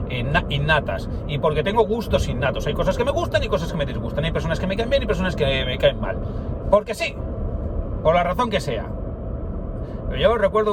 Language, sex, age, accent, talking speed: Spanish, male, 40-59, Spanish, 215 wpm